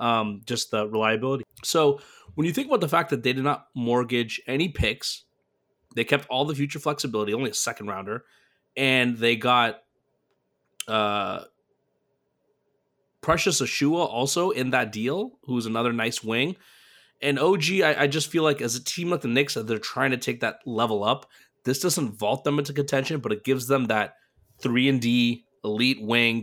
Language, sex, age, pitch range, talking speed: English, male, 30-49, 110-140 Hz, 175 wpm